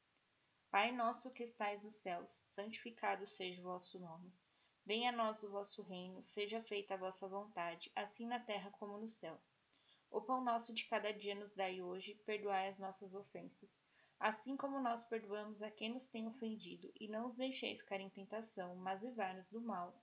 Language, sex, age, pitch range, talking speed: Portuguese, female, 10-29, 195-240 Hz, 185 wpm